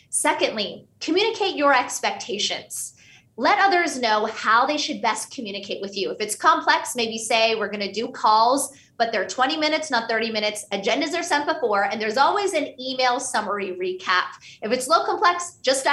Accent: American